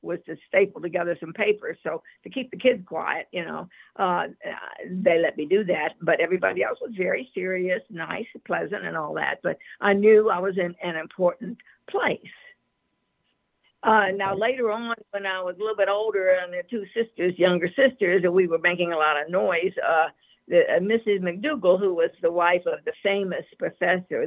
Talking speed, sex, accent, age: 190 wpm, female, American, 60-79